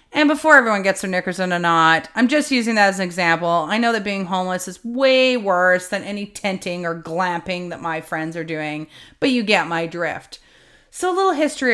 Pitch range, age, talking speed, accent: 165-230 Hz, 30-49, 220 wpm, American